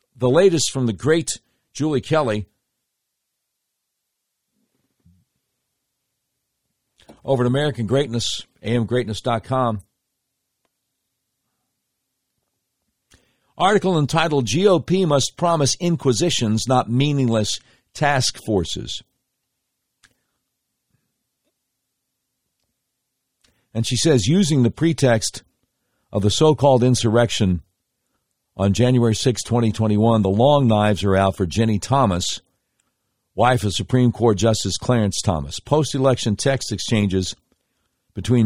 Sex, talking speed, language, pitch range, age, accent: male, 85 wpm, English, 105-135 Hz, 60-79, American